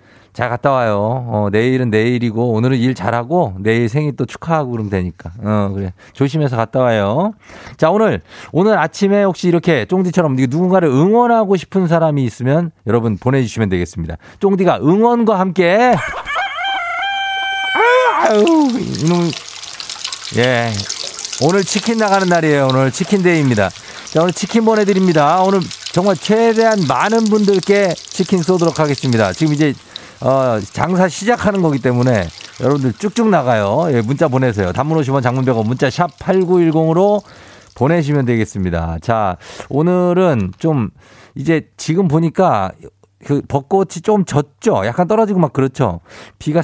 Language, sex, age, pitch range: Korean, male, 40-59, 115-185 Hz